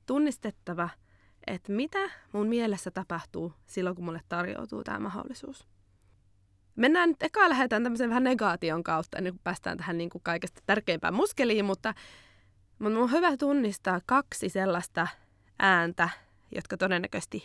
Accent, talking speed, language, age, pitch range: native, 120 wpm, Finnish, 20-39, 160-215 Hz